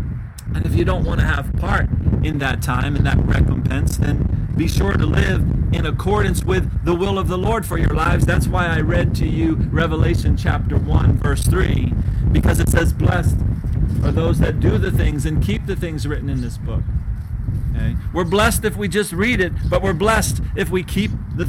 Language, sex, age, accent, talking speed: English, male, 50-69, American, 205 wpm